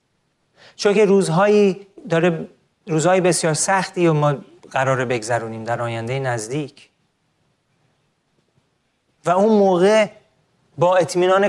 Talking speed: 95 wpm